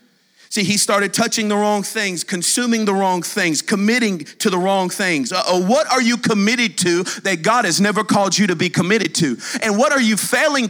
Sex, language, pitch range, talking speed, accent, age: male, English, 150-220 Hz, 210 wpm, American, 40-59